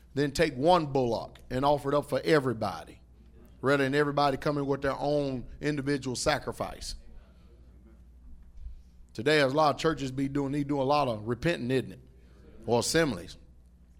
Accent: American